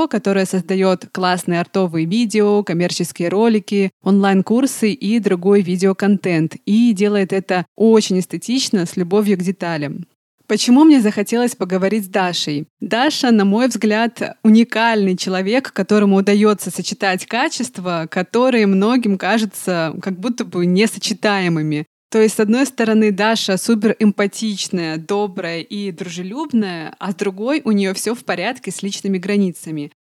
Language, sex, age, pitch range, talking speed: Russian, female, 20-39, 185-220 Hz, 130 wpm